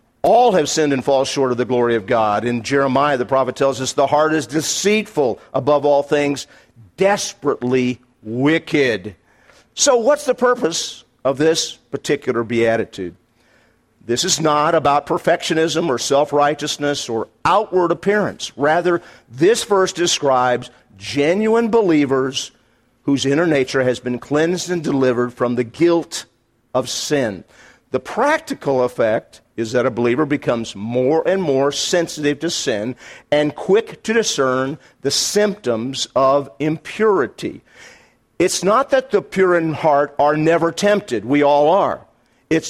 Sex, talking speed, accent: male, 140 wpm, American